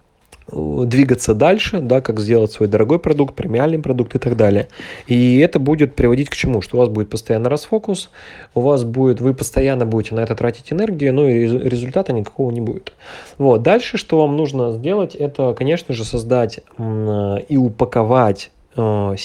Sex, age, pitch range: male, 20-39, 110-140 Hz